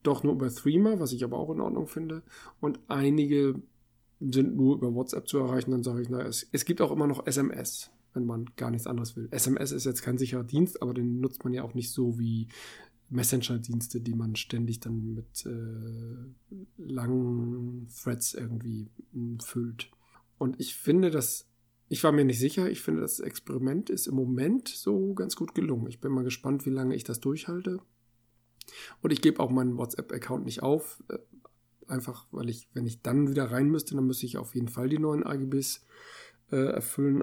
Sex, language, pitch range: male, German, 120-140 Hz